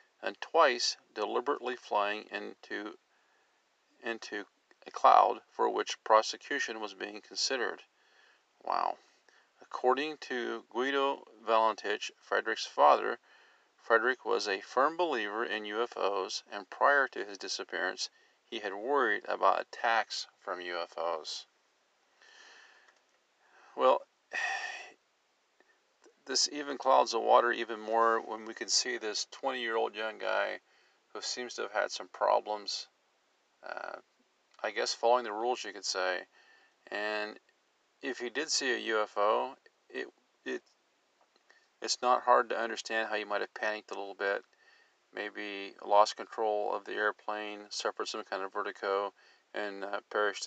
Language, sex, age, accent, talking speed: English, male, 40-59, American, 130 wpm